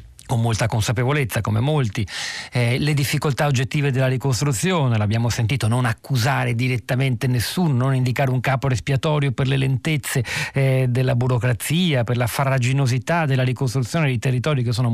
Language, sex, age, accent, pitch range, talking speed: Italian, male, 40-59, native, 120-145 Hz, 150 wpm